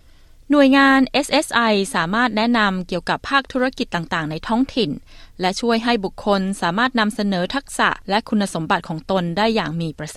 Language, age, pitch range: Thai, 20-39, 180-230 Hz